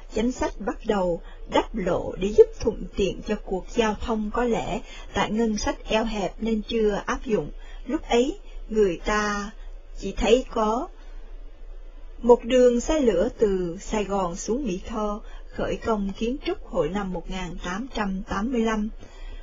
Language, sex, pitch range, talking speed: Vietnamese, female, 195-245 Hz, 150 wpm